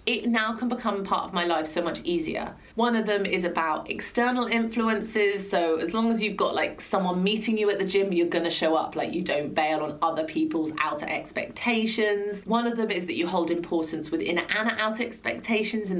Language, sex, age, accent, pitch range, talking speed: English, female, 30-49, British, 170-230 Hz, 215 wpm